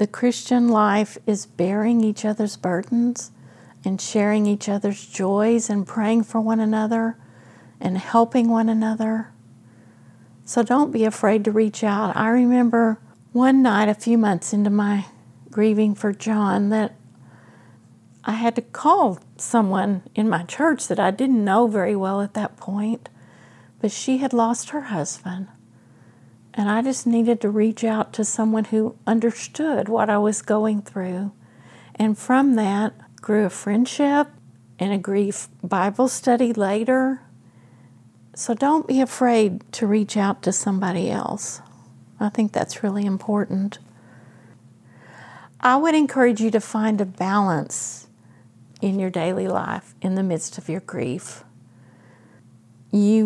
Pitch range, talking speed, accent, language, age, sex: 185-230 Hz, 145 wpm, American, English, 50-69, female